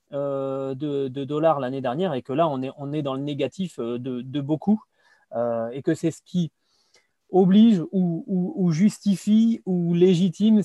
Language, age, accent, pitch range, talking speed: French, 30-49, French, 135-180 Hz, 170 wpm